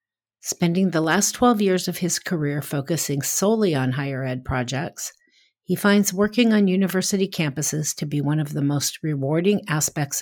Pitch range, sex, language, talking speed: 155-200 Hz, female, English, 165 wpm